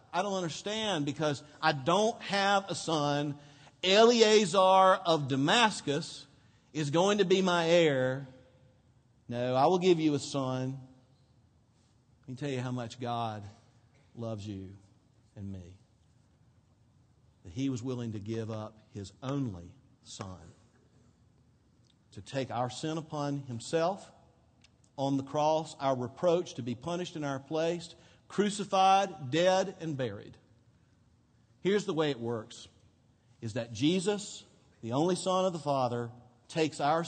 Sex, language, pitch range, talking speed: male, English, 115-155 Hz, 135 wpm